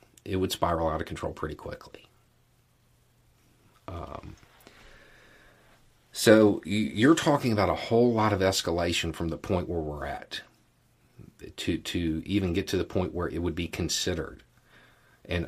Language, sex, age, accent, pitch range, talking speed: English, male, 40-59, American, 85-110 Hz, 145 wpm